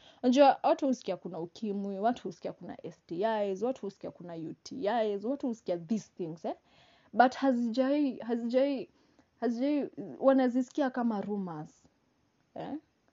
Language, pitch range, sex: English, 190-245 Hz, female